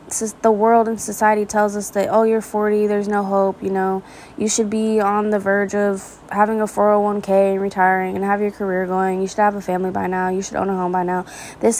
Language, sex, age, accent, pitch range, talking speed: English, female, 20-39, American, 195-225 Hz, 240 wpm